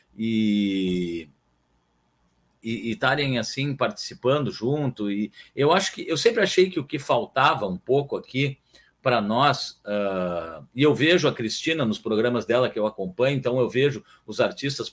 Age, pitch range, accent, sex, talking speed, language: 50-69, 120-155 Hz, Brazilian, male, 155 wpm, Portuguese